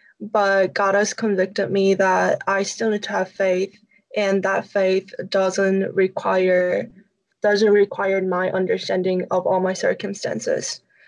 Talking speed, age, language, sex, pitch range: 135 wpm, 10-29, English, female, 190-210 Hz